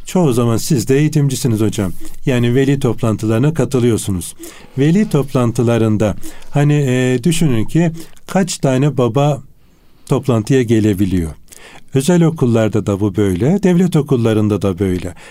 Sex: male